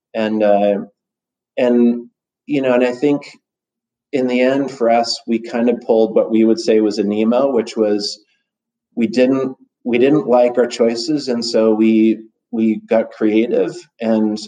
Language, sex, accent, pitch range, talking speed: English, male, American, 105-120 Hz, 165 wpm